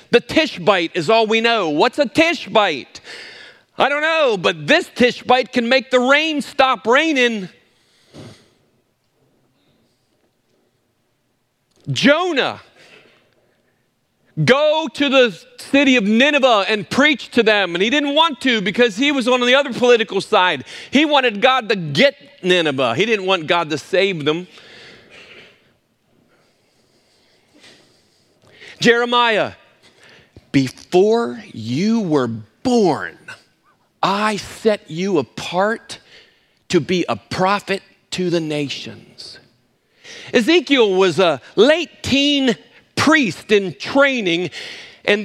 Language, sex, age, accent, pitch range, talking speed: English, male, 50-69, American, 185-265 Hz, 110 wpm